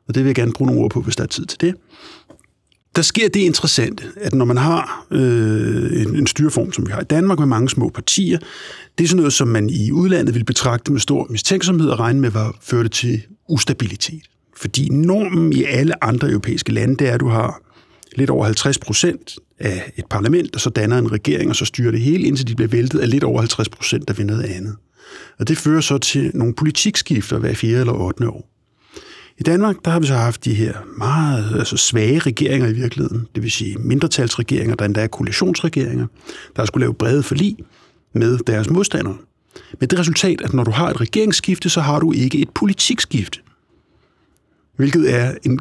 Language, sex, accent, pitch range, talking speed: Danish, male, native, 115-155 Hz, 210 wpm